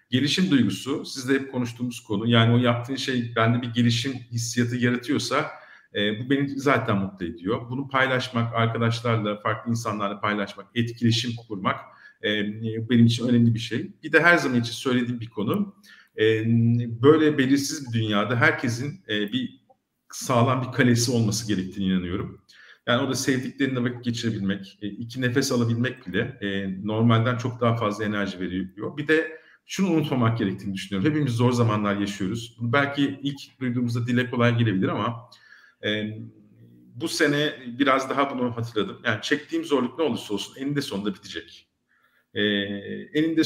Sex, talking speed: male, 140 wpm